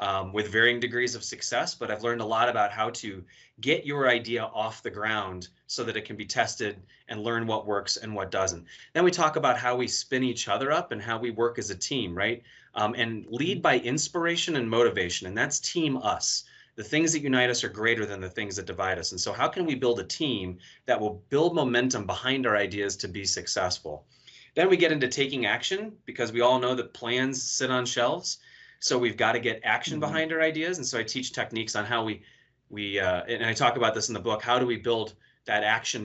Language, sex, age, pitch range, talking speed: English, male, 30-49, 105-135 Hz, 235 wpm